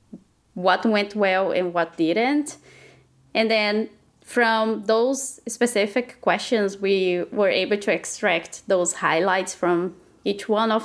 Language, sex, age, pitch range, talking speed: English, female, 20-39, 185-230 Hz, 125 wpm